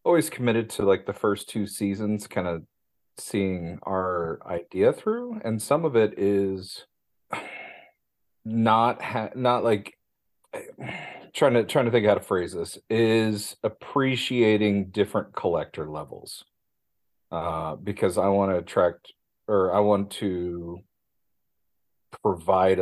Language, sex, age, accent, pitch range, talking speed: English, male, 40-59, American, 90-115 Hz, 125 wpm